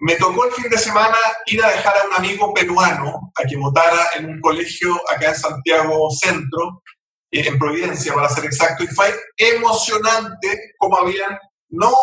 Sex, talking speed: male, 170 wpm